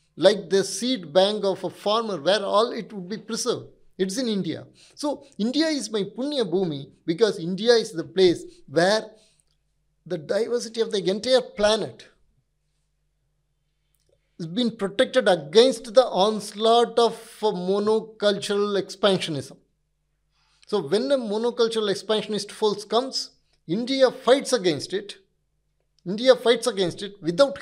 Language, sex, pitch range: Hindi, male, 165-225 Hz